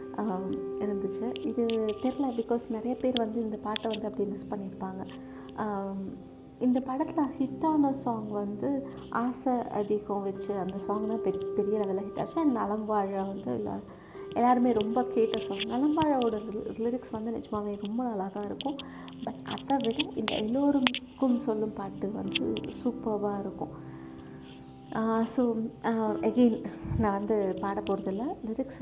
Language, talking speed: Tamil, 130 wpm